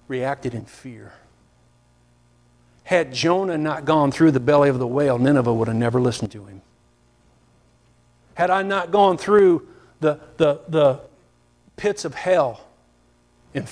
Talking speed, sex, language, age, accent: 140 wpm, male, English, 50-69, American